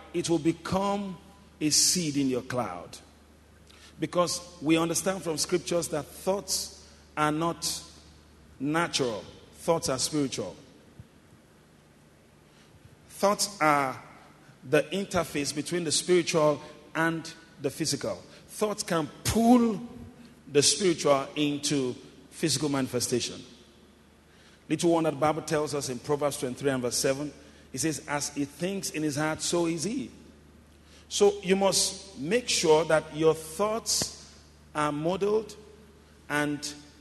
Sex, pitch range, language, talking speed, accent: male, 125-170 Hz, English, 120 wpm, Nigerian